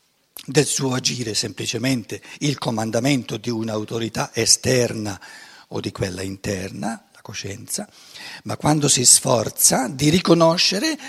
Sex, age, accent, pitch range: male, 60-79, native, 130-185 Hz